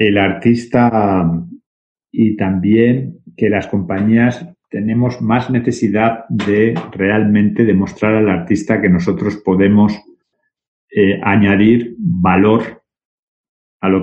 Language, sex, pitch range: Spanish, male, 95-125 Hz